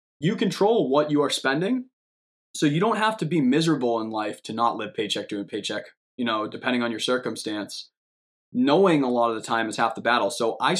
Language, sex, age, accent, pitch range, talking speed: English, male, 20-39, American, 115-145 Hz, 215 wpm